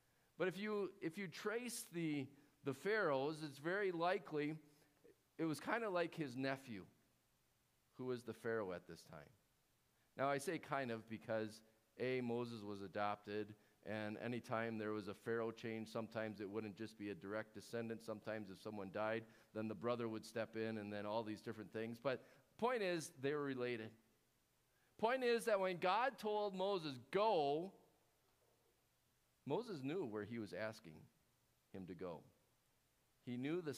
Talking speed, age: 170 wpm, 40-59